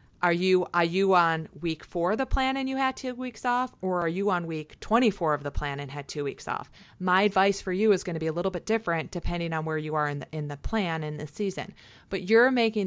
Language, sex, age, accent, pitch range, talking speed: English, female, 30-49, American, 150-185 Hz, 275 wpm